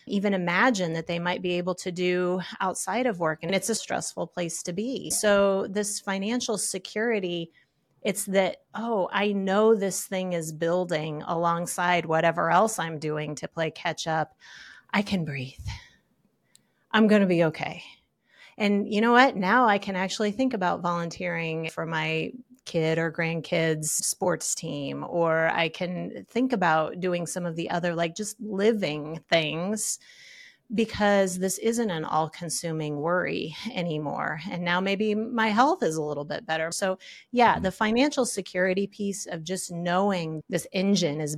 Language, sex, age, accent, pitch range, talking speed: English, female, 30-49, American, 165-205 Hz, 160 wpm